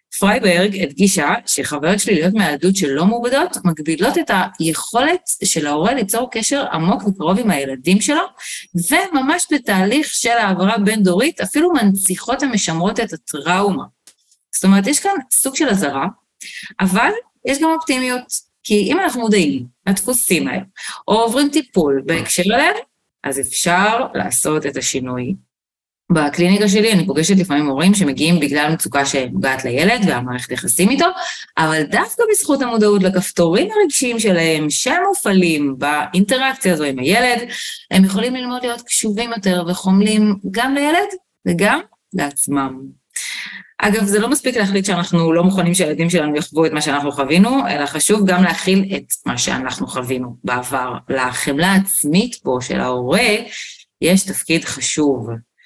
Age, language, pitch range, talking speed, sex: 30-49, Hebrew, 155-240 Hz, 140 wpm, female